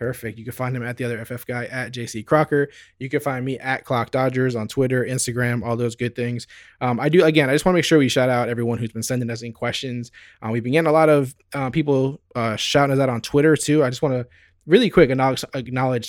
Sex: male